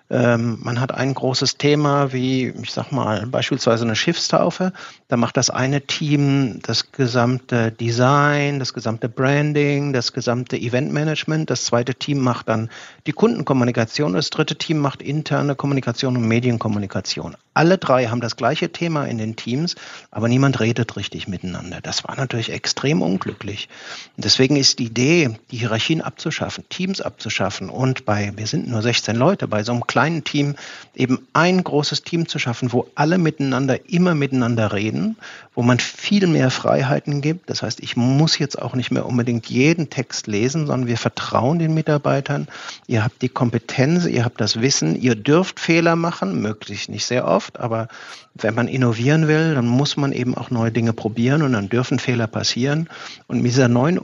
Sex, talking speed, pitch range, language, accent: male, 170 wpm, 120-145 Hz, German, German